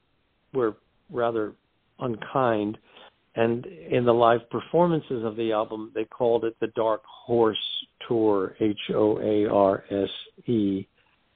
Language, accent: English, American